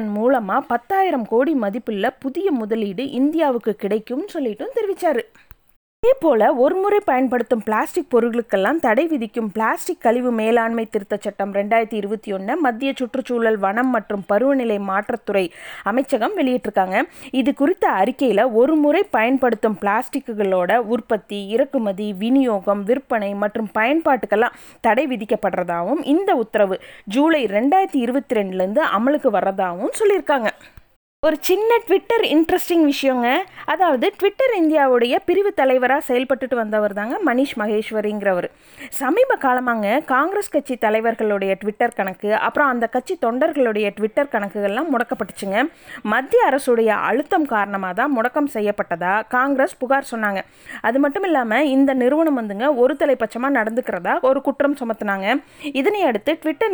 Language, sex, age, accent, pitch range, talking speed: Tamil, female, 20-39, native, 215-290 Hz, 115 wpm